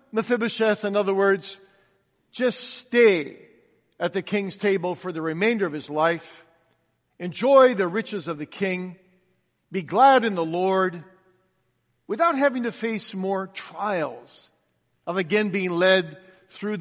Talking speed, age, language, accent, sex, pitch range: 135 wpm, 50-69, English, American, male, 150-205 Hz